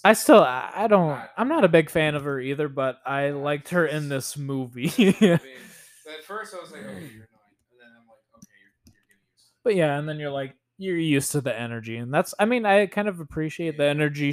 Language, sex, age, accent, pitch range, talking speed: English, male, 20-39, American, 120-165 Hz, 235 wpm